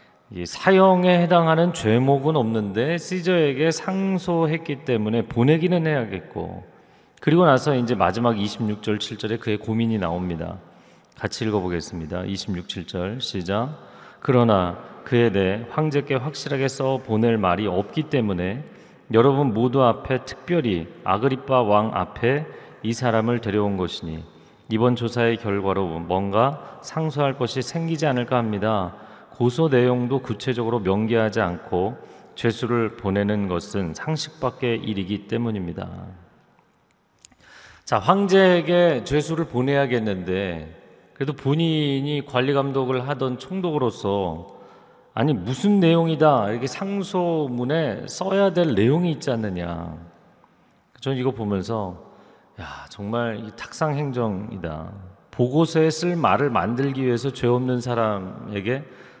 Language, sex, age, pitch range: Korean, male, 40-59, 100-145 Hz